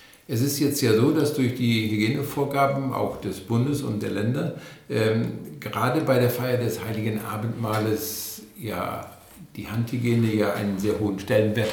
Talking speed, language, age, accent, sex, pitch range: 160 wpm, German, 60-79, German, male, 105-135 Hz